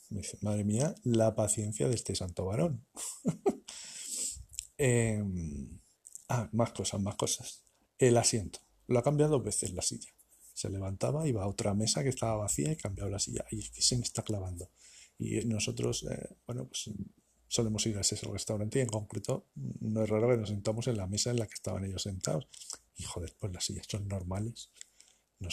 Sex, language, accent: male, Spanish, Spanish